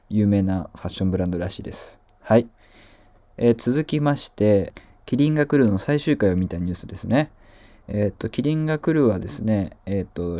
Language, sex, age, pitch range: Japanese, male, 20-39, 95-120 Hz